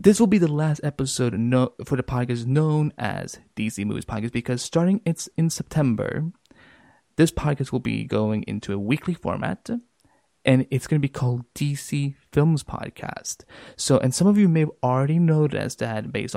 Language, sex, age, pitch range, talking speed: English, male, 20-39, 110-150 Hz, 180 wpm